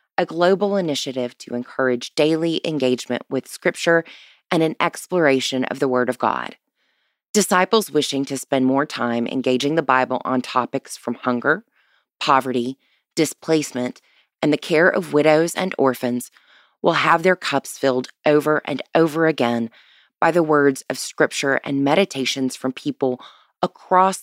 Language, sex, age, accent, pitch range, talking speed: English, female, 20-39, American, 125-165 Hz, 145 wpm